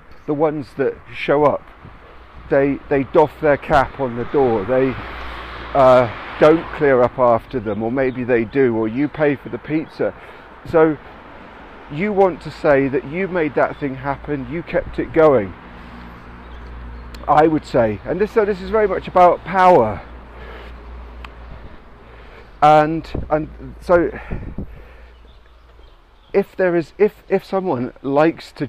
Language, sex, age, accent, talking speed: English, male, 40-59, British, 140 wpm